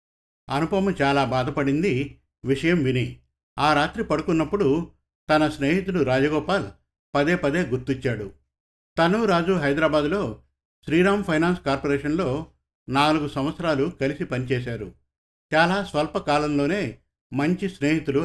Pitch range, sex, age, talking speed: 130-160 Hz, male, 50-69, 95 wpm